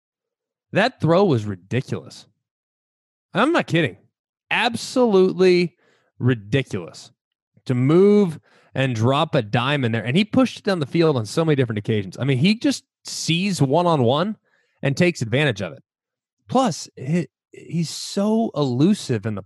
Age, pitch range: 20-39, 120-165 Hz